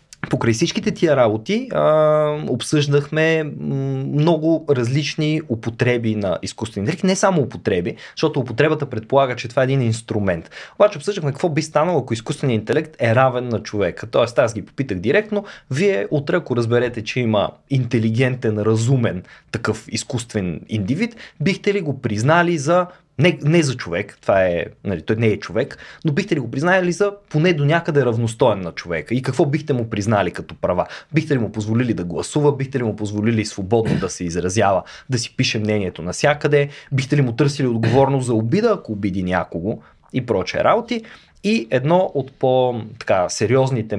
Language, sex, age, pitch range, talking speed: Bulgarian, male, 20-39, 115-155 Hz, 165 wpm